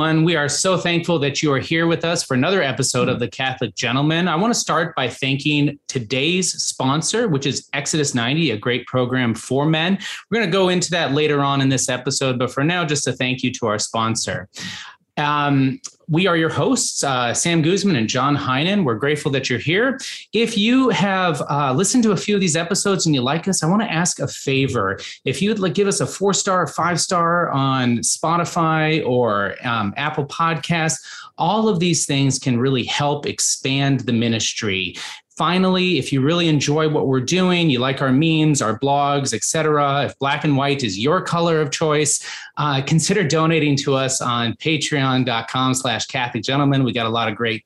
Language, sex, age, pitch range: English, male, 30-49, 130-170 Hz